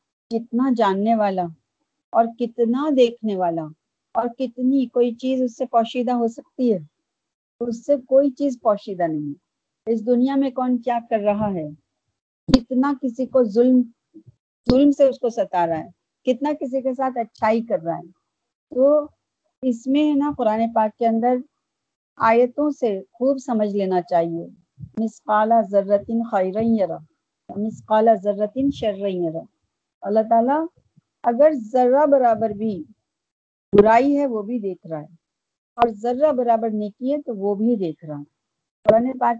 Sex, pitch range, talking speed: female, 195-255 Hz, 150 wpm